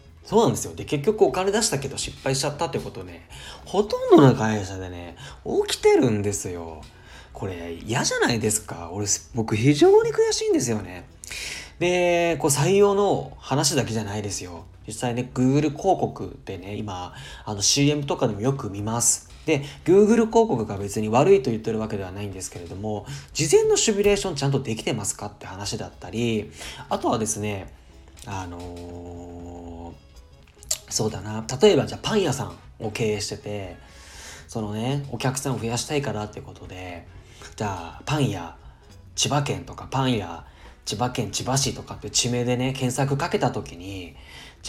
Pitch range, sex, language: 90-135 Hz, male, Japanese